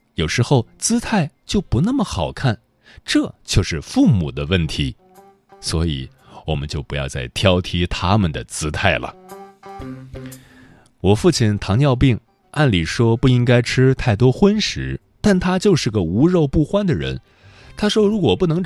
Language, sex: Chinese, male